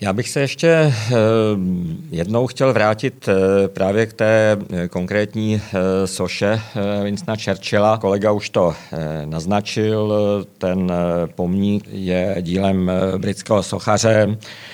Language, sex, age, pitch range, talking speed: Czech, male, 50-69, 95-110 Hz, 100 wpm